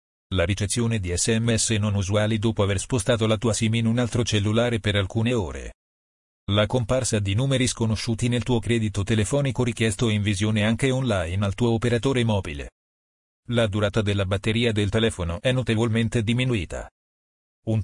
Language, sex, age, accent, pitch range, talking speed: Italian, male, 40-59, native, 100-120 Hz, 160 wpm